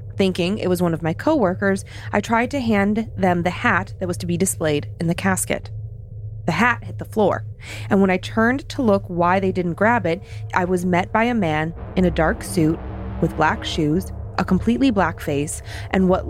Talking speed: 210 wpm